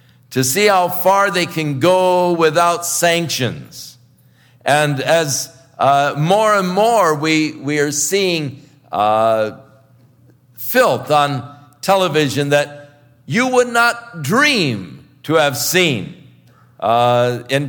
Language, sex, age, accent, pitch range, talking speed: English, male, 50-69, American, 125-160 Hz, 110 wpm